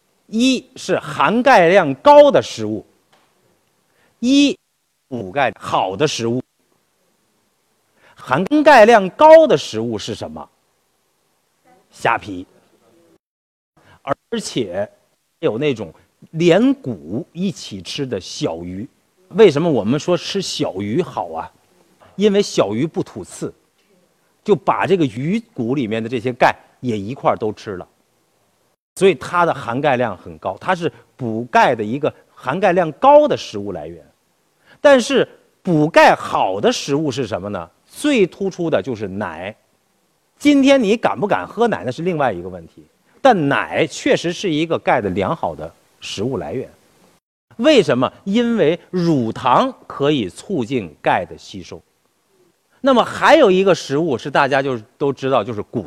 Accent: native